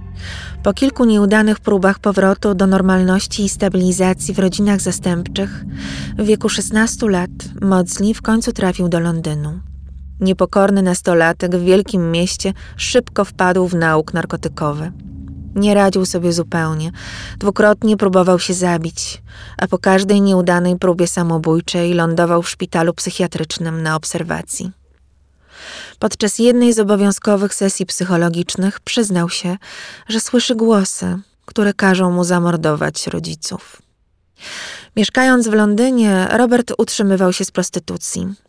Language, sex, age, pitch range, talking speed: Polish, female, 20-39, 170-200 Hz, 120 wpm